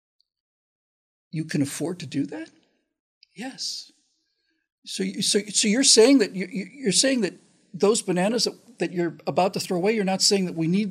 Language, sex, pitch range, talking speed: English, male, 165-270 Hz, 180 wpm